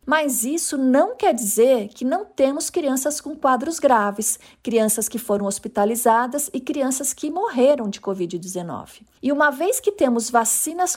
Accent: Brazilian